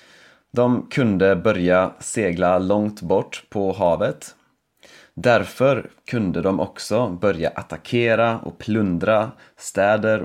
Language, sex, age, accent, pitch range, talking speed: Swedish, male, 30-49, native, 90-120 Hz, 100 wpm